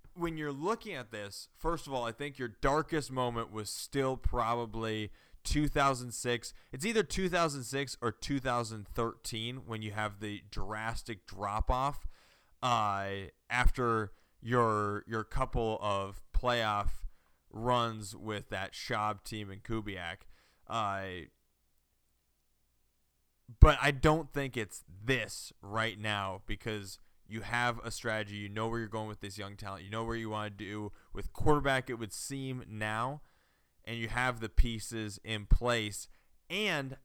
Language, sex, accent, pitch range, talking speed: English, male, American, 100-125 Hz, 140 wpm